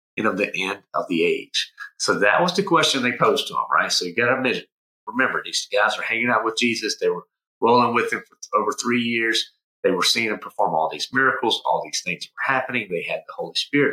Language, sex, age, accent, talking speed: English, male, 40-59, American, 240 wpm